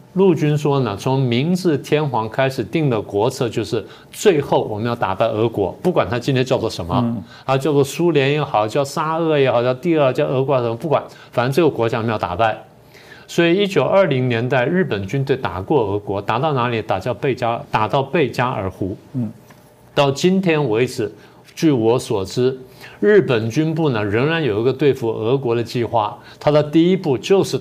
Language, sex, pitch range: Chinese, male, 115-150 Hz